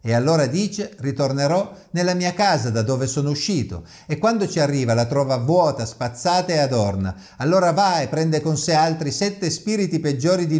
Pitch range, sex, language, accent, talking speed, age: 120-165 Hz, male, Italian, native, 180 wpm, 50-69